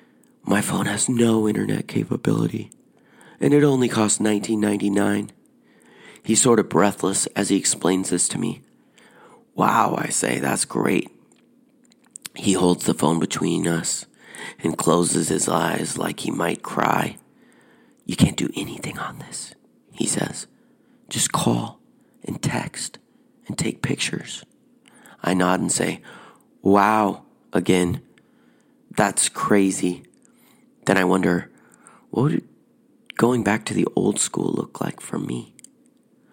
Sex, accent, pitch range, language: male, American, 95-135 Hz, English